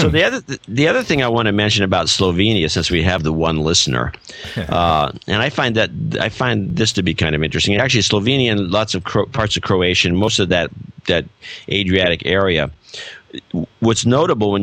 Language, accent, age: English, American, 50-69